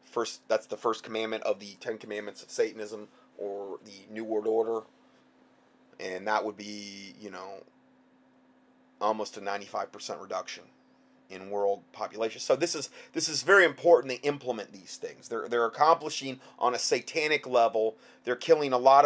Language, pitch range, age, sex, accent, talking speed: English, 110-175 Hz, 30-49, male, American, 165 wpm